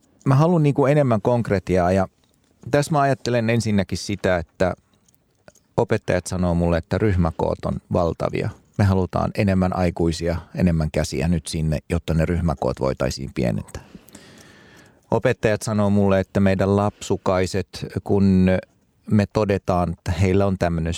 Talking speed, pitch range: 125 wpm, 85-105 Hz